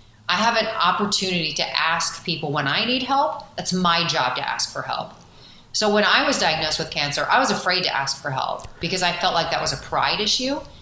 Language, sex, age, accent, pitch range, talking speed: English, female, 30-49, American, 150-190 Hz, 225 wpm